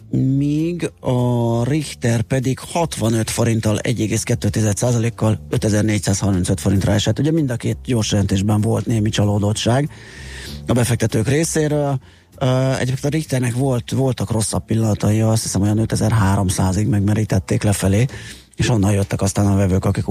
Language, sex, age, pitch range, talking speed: Hungarian, male, 30-49, 105-130 Hz, 120 wpm